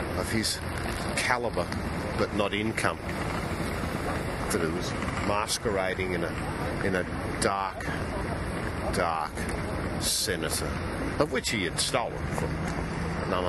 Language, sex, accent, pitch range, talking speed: English, female, Australian, 85-115 Hz, 105 wpm